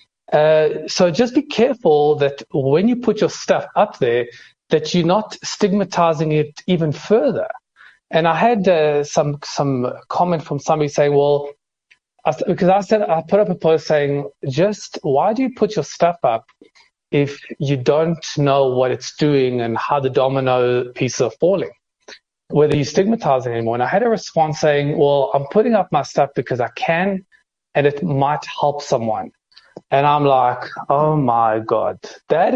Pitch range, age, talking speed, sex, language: 140-200 Hz, 30-49, 170 wpm, male, English